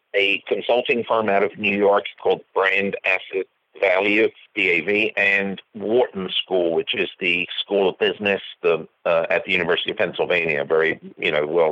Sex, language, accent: male, English, American